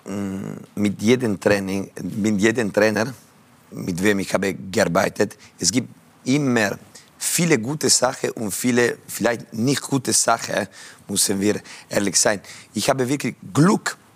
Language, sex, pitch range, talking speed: German, male, 105-120 Hz, 130 wpm